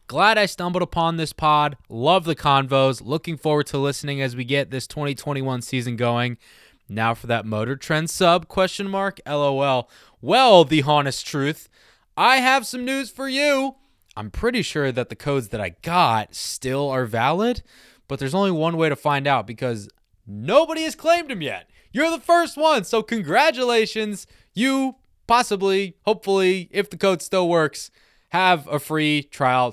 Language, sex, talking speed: English, male, 170 wpm